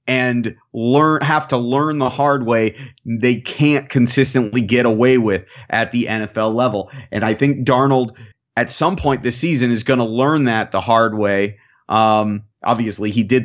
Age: 30-49